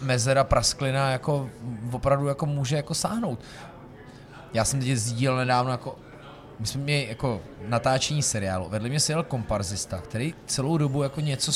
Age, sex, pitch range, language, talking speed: 30-49, male, 115-145 Hz, Czech, 155 wpm